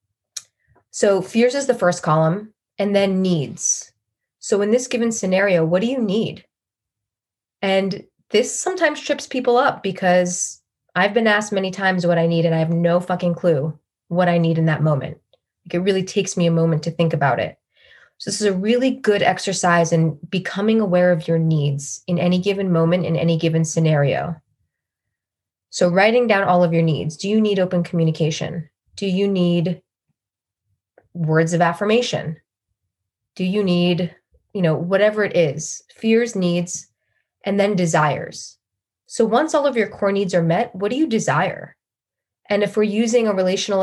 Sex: female